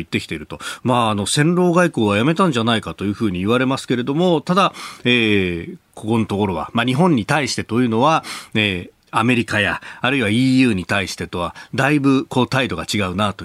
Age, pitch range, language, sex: 40-59, 100-150 Hz, Japanese, male